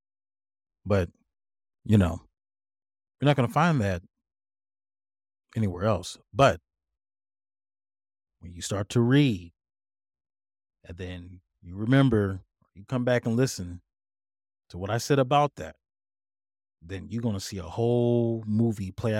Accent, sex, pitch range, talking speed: American, male, 90-125 Hz, 130 wpm